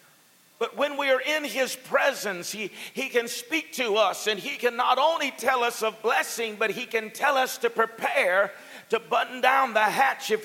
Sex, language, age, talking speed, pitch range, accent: male, English, 50-69, 200 wpm, 225-275 Hz, American